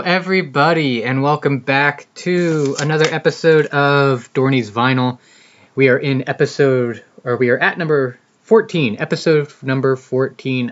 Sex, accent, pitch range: male, American, 120-145 Hz